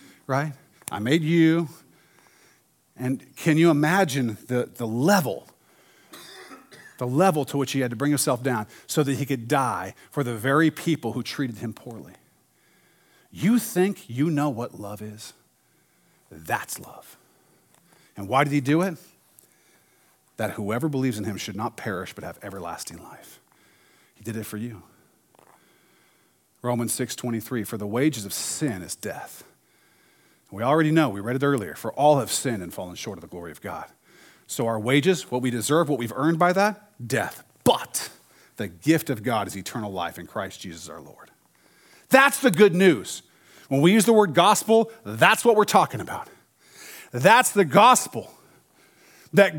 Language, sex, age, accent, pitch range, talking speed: English, male, 40-59, American, 120-190 Hz, 170 wpm